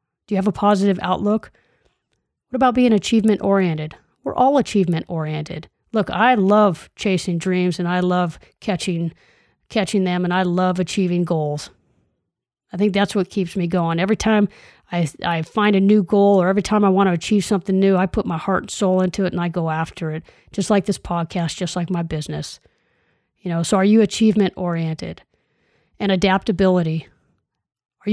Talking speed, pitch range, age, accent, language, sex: 185 wpm, 175-205 Hz, 30-49, American, English, female